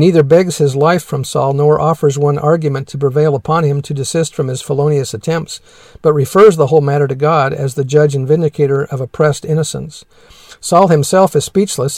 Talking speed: 195 wpm